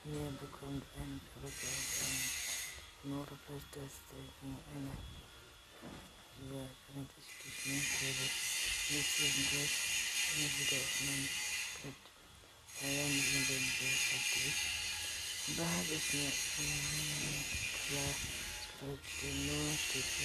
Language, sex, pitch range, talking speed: German, female, 95-140 Hz, 40 wpm